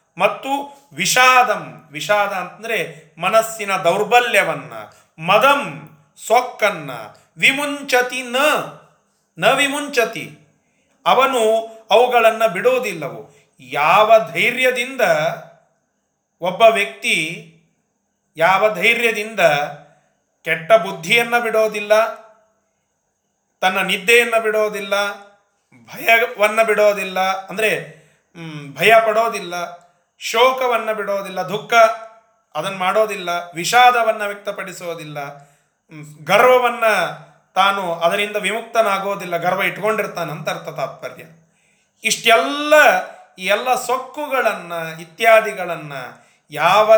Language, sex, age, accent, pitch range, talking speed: Kannada, male, 40-59, native, 175-230 Hz, 65 wpm